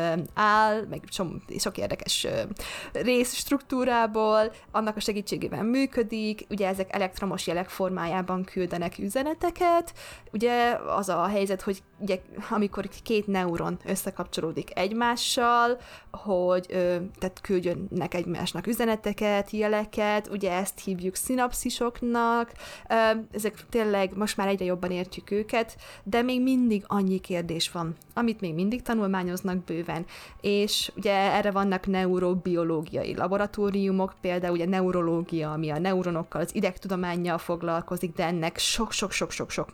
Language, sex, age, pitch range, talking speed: Hungarian, female, 20-39, 180-215 Hz, 115 wpm